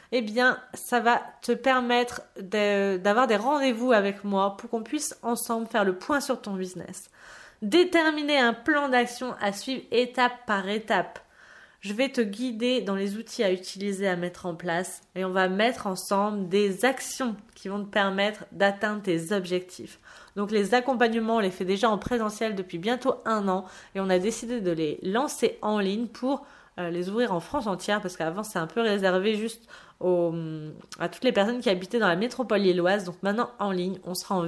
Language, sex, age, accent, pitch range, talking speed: French, female, 20-39, French, 195-250 Hz, 190 wpm